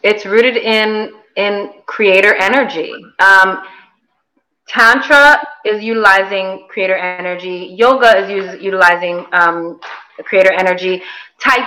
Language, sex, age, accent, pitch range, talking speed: English, female, 20-39, American, 190-230 Hz, 105 wpm